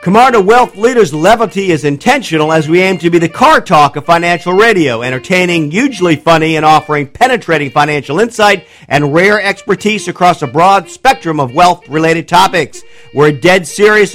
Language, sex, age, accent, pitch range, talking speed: English, male, 50-69, American, 155-210 Hz, 160 wpm